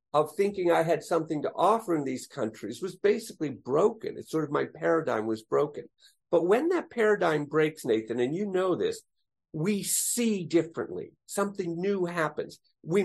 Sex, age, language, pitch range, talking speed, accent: male, 50-69, English, 160-210 Hz, 170 wpm, American